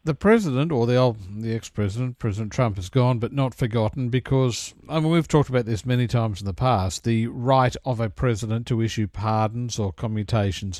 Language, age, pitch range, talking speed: English, 50-69, 110-165 Hz, 205 wpm